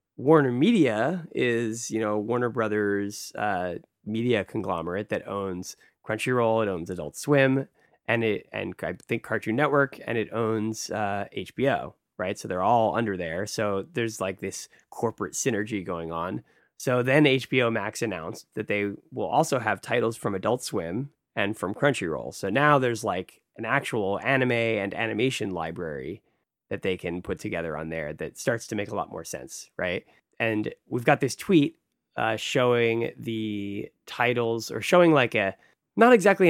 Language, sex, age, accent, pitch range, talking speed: English, male, 20-39, American, 105-135 Hz, 165 wpm